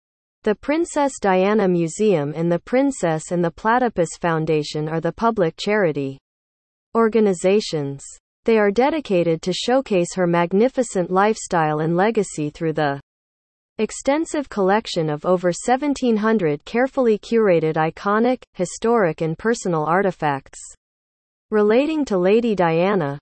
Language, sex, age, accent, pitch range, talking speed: English, female, 40-59, American, 160-225 Hz, 115 wpm